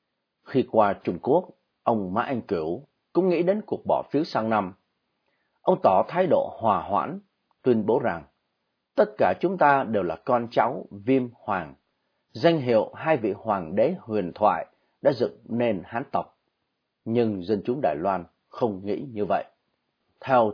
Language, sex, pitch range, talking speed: Vietnamese, male, 105-155 Hz, 170 wpm